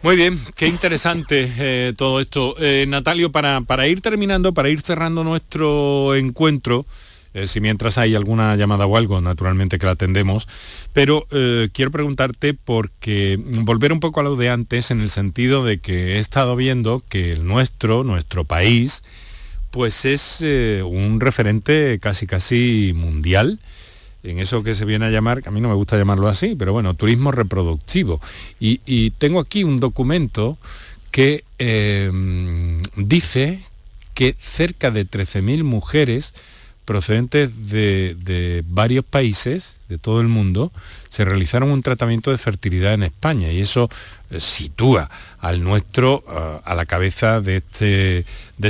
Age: 40-59